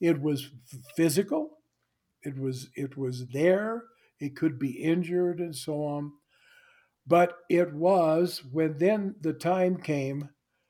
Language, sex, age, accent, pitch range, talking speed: English, male, 60-79, American, 145-190 Hz, 130 wpm